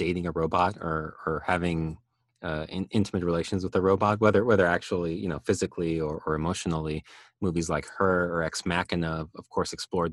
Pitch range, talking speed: 80-105 Hz, 180 wpm